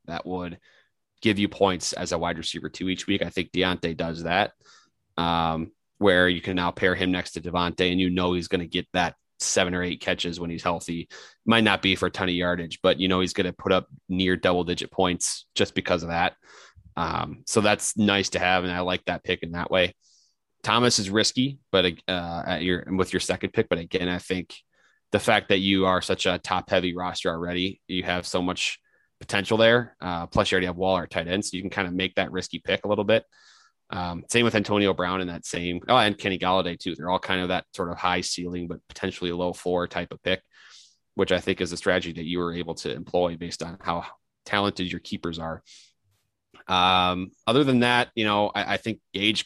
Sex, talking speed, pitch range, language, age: male, 230 wpm, 85-95 Hz, English, 20-39